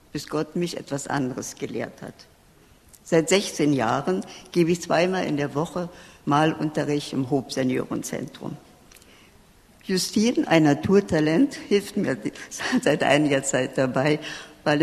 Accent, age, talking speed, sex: German, 60-79, 115 wpm, female